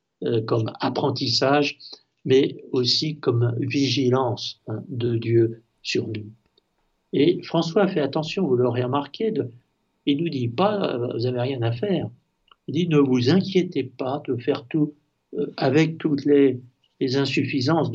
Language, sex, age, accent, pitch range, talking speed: French, male, 60-79, French, 120-150 Hz, 150 wpm